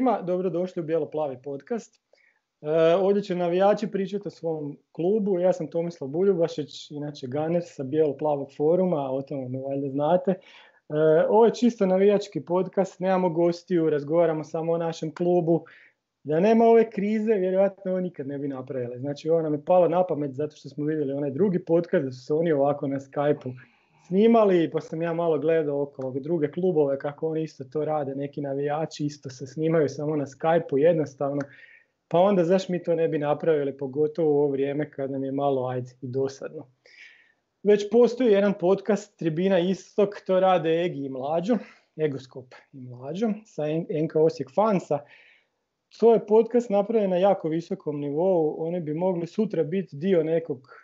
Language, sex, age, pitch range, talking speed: Croatian, male, 30-49, 145-190 Hz, 175 wpm